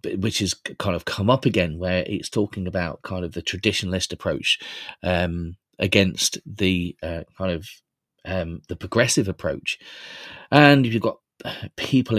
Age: 30-49